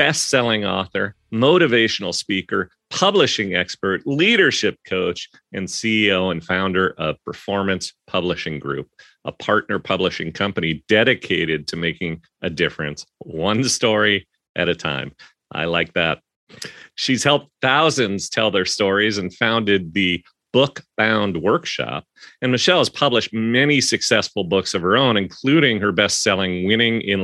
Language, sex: English, male